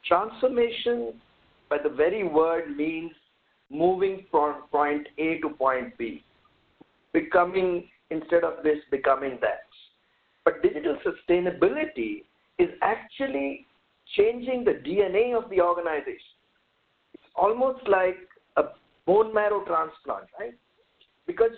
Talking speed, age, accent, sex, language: 110 wpm, 50-69, Indian, male, English